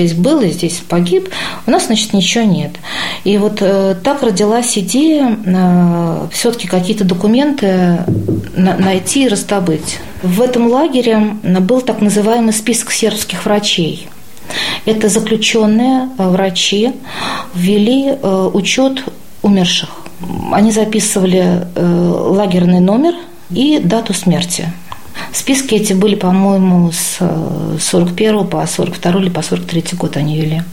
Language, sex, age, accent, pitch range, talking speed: Russian, female, 40-59, native, 180-225 Hz, 135 wpm